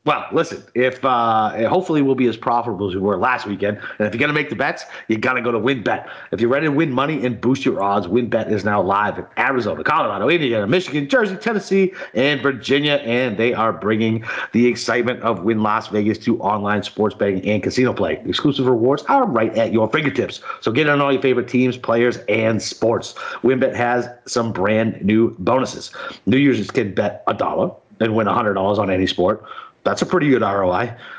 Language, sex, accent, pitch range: English, male, American, 110-150 Hz